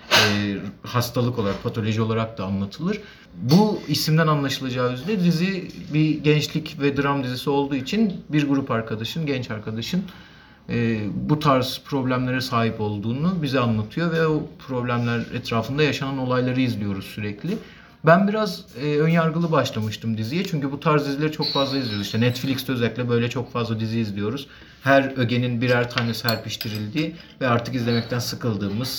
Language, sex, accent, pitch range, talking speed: Turkish, male, native, 115-150 Hz, 145 wpm